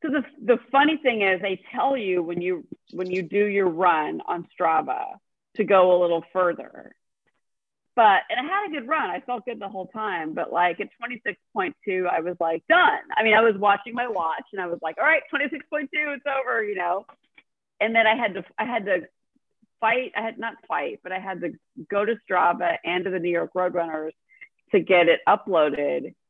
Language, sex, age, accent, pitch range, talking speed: English, female, 40-59, American, 175-265 Hz, 210 wpm